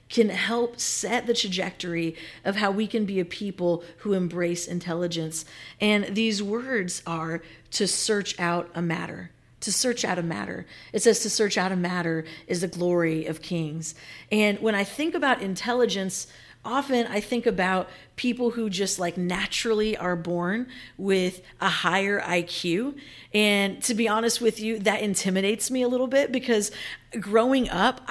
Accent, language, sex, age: American, English, female, 40-59